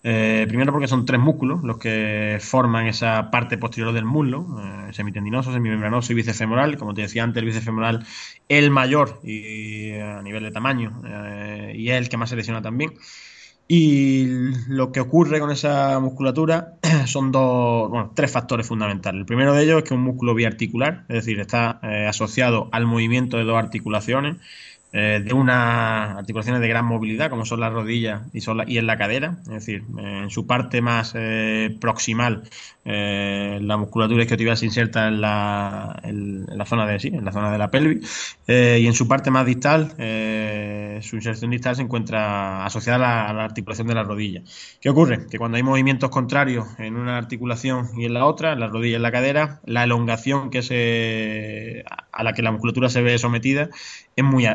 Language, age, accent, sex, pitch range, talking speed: Spanish, 20-39, Spanish, male, 110-130 Hz, 195 wpm